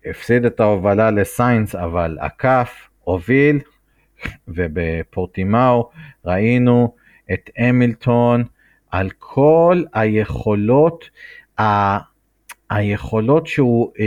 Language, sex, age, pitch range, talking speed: Hebrew, male, 50-69, 105-135 Hz, 75 wpm